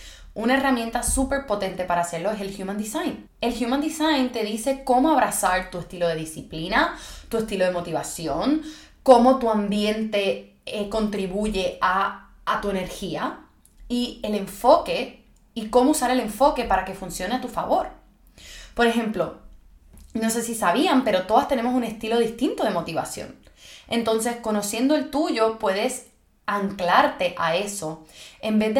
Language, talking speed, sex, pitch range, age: Spanish, 150 wpm, female, 195-255 Hz, 20-39